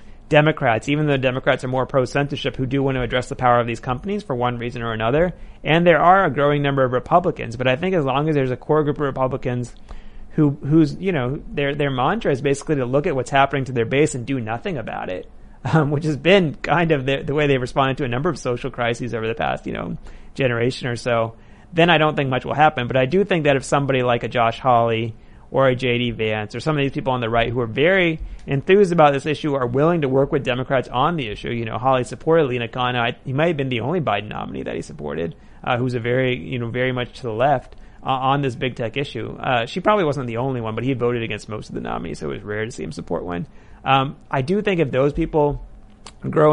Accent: American